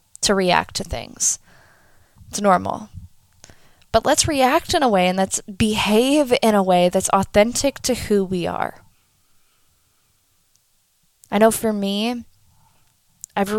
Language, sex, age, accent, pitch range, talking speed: English, female, 20-39, American, 185-225 Hz, 130 wpm